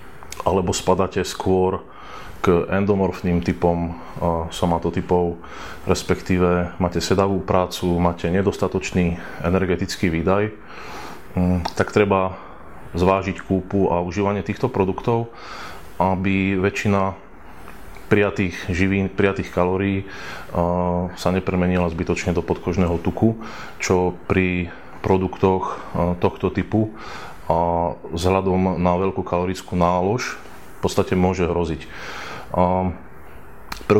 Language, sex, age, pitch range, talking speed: Slovak, male, 20-39, 90-100 Hz, 90 wpm